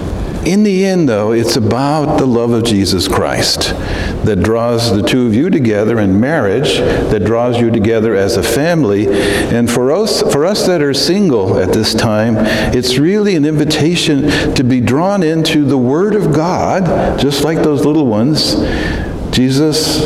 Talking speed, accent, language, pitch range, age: 170 wpm, American, English, 105-145 Hz, 60-79